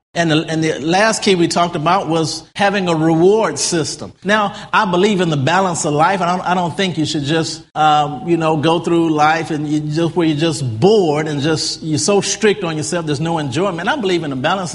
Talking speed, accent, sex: 240 wpm, American, male